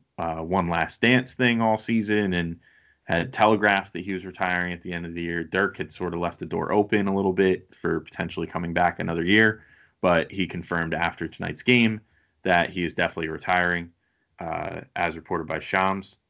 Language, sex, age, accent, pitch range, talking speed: English, male, 20-39, American, 85-105 Hz, 195 wpm